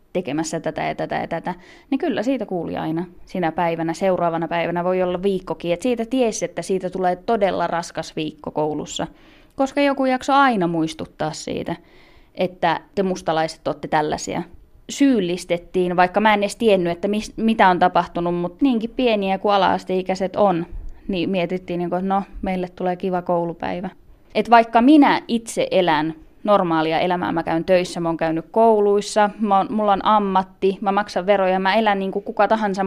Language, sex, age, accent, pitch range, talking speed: Finnish, female, 20-39, native, 170-210 Hz, 160 wpm